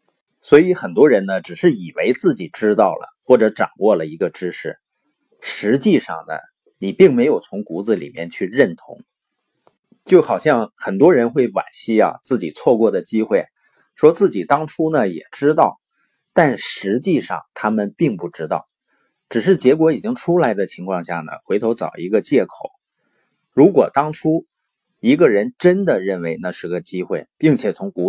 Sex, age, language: male, 30-49, Chinese